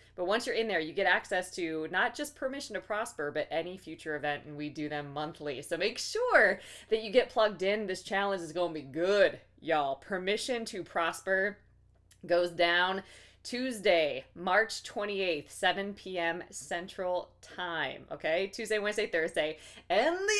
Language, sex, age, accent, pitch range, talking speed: English, female, 20-39, American, 160-215 Hz, 170 wpm